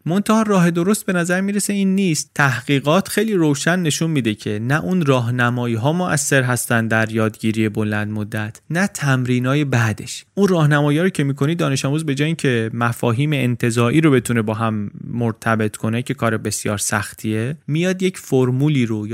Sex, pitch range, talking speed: male, 115-160 Hz, 175 wpm